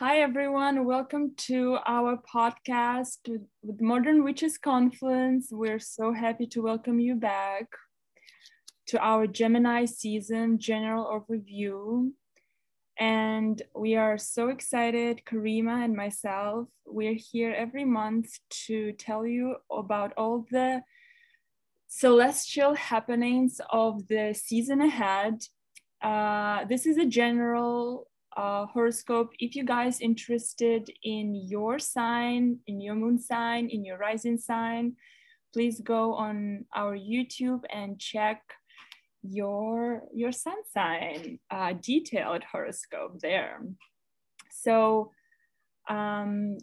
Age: 20-39